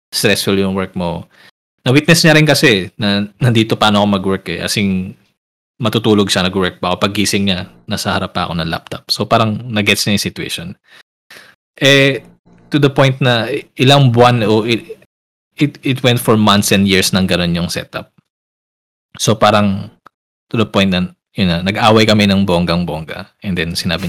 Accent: native